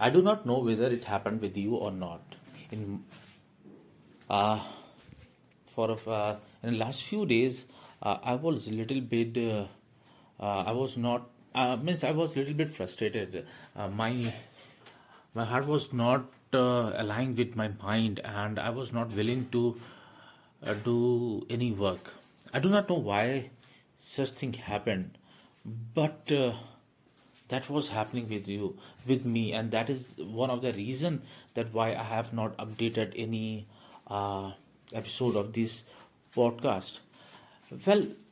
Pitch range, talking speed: 110-130 Hz, 150 wpm